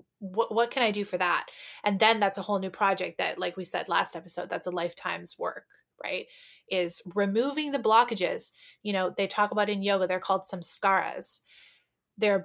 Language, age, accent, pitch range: English, 20-39, American, 185-230 Hz